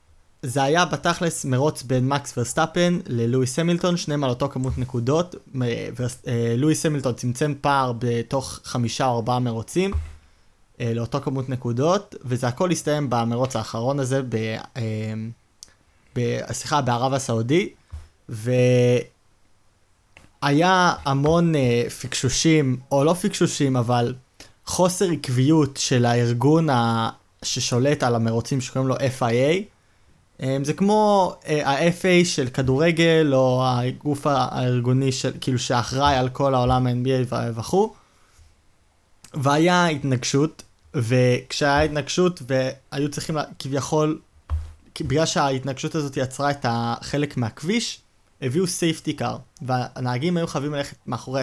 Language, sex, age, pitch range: Hebrew, male, 20-39, 115-155 Hz